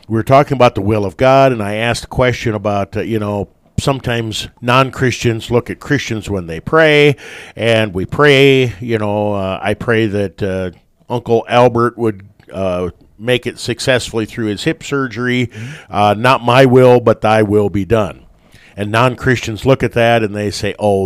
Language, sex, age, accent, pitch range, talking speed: English, male, 50-69, American, 105-125 Hz, 180 wpm